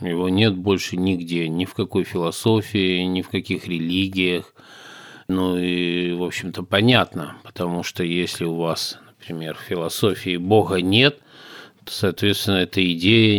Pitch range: 90-105 Hz